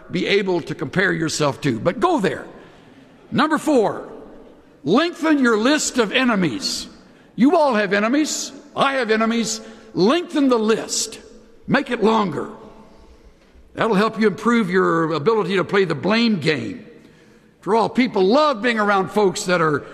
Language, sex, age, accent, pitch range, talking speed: English, male, 60-79, American, 170-240 Hz, 145 wpm